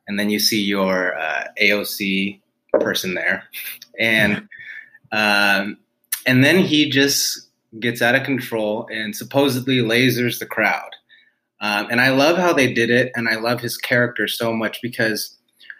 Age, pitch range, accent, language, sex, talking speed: 30-49, 105-125 Hz, American, English, male, 150 wpm